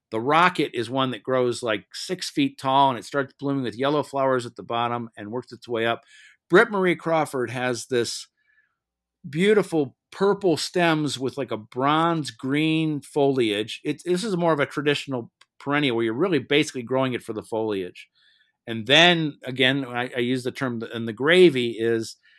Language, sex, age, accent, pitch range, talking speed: English, male, 50-69, American, 120-150 Hz, 180 wpm